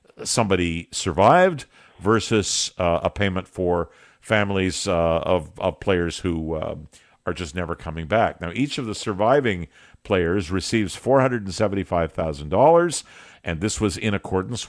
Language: English